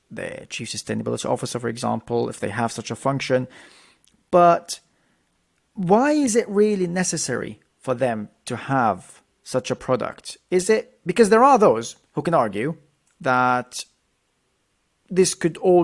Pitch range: 125-175 Hz